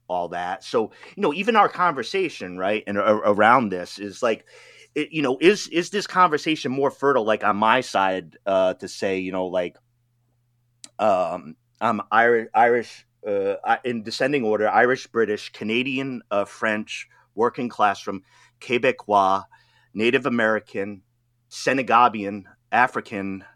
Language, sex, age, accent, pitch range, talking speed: English, male, 30-49, American, 110-155 Hz, 140 wpm